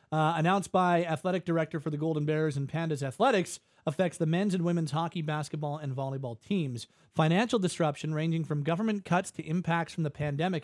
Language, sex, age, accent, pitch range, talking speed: English, male, 40-59, American, 145-175 Hz, 185 wpm